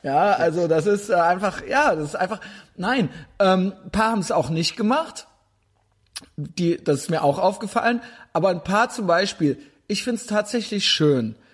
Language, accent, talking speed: German, German, 175 wpm